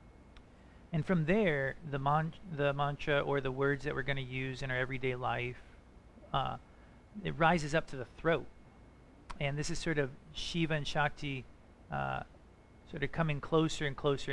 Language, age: English, 40-59